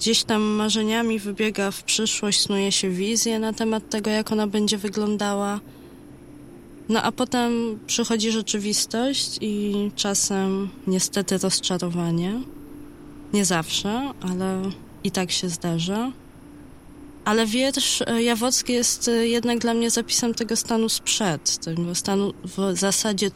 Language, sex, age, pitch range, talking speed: Polish, female, 20-39, 180-220 Hz, 120 wpm